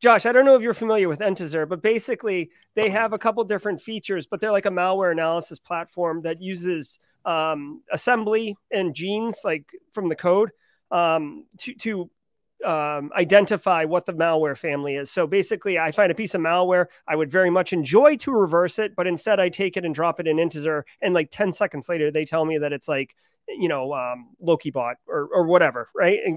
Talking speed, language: 205 wpm, English